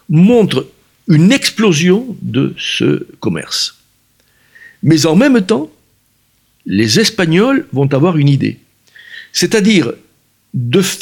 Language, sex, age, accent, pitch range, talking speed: French, male, 60-79, French, 130-205 Hz, 100 wpm